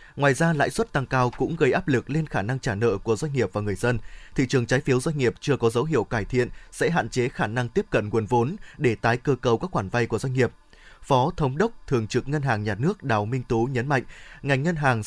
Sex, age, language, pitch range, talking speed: male, 20-39, Vietnamese, 115-145 Hz, 275 wpm